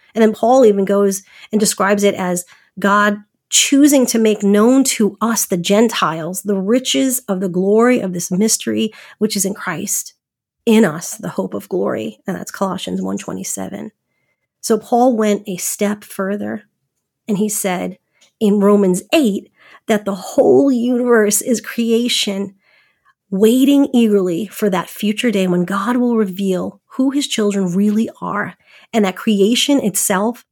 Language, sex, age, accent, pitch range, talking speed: English, female, 40-59, American, 195-235 Hz, 150 wpm